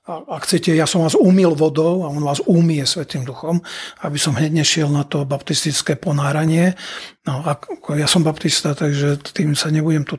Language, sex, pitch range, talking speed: Czech, male, 150-185 Hz, 175 wpm